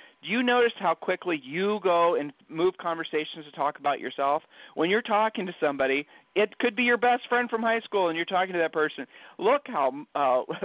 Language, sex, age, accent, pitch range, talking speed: English, male, 40-59, American, 145-185 Hz, 210 wpm